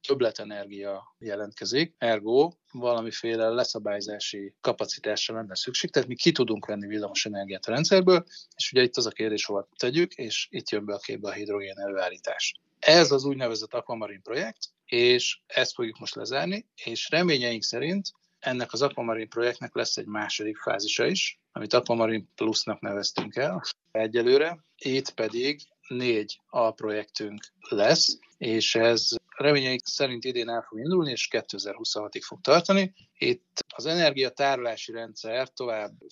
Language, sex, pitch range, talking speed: Hungarian, male, 105-145 Hz, 140 wpm